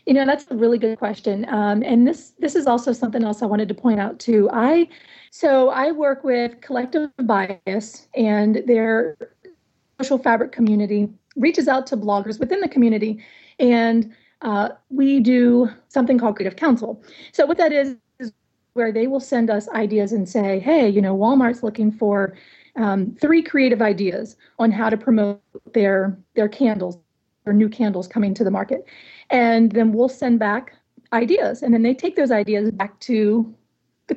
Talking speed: 175 wpm